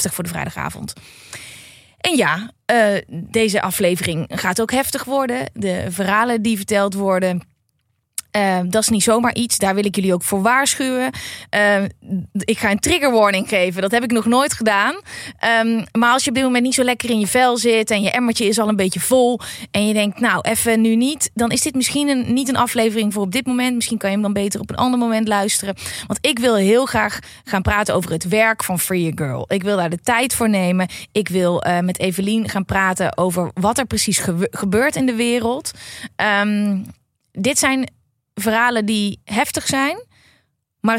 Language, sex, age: Dutch, female, 20-39